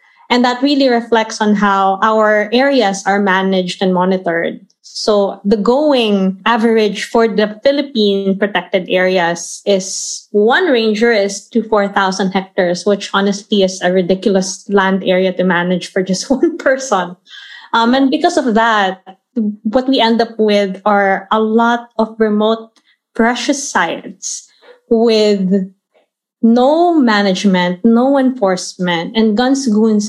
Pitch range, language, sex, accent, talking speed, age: 195-235 Hz, English, female, Filipino, 130 wpm, 20-39